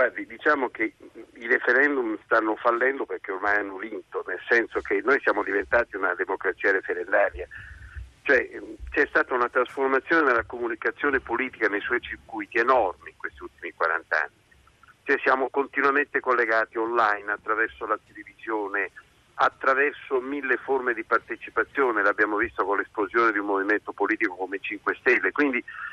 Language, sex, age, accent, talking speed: Italian, male, 50-69, native, 145 wpm